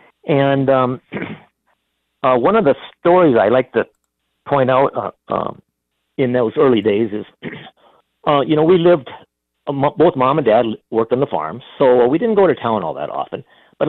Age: 50-69